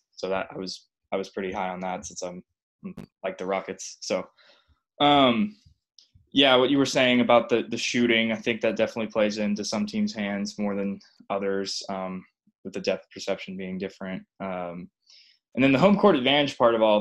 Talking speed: 195 wpm